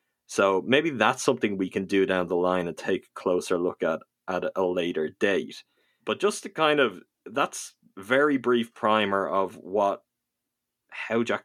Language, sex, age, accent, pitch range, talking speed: English, male, 20-39, Irish, 95-125 Hz, 175 wpm